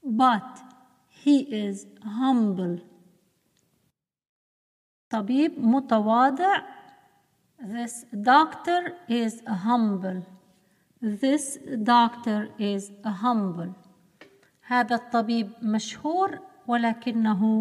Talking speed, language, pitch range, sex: 60 wpm, Arabic, 210-275 Hz, female